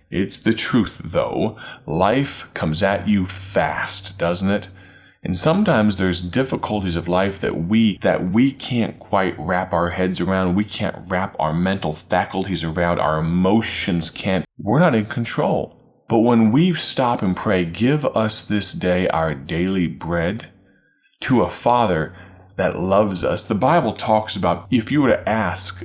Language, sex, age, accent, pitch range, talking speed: English, male, 30-49, American, 90-115 Hz, 160 wpm